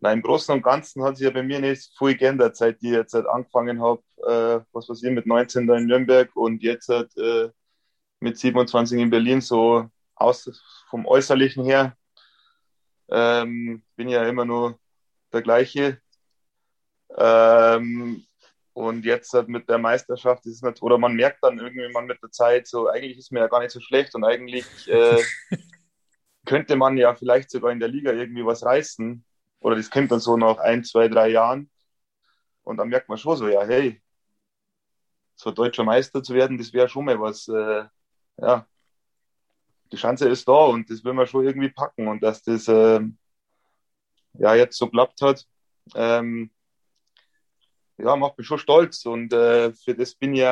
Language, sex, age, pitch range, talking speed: English, male, 20-39, 115-130 Hz, 180 wpm